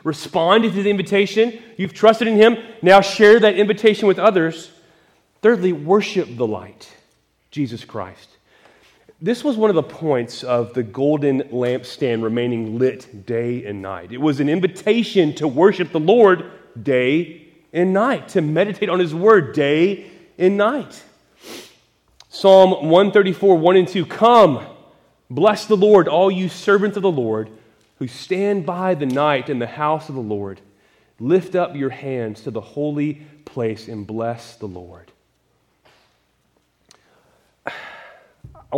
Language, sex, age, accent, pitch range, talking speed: English, male, 30-49, American, 120-185 Hz, 145 wpm